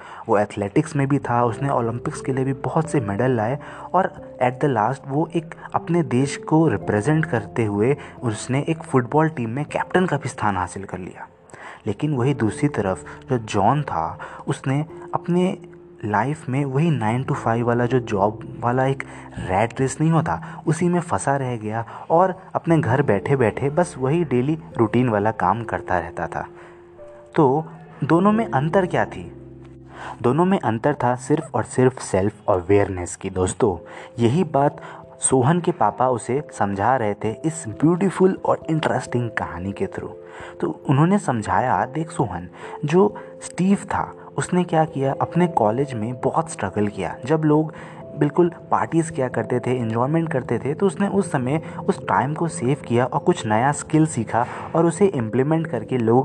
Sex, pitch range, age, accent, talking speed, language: male, 110-160 Hz, 30-49, native, 170 wpm, Hindi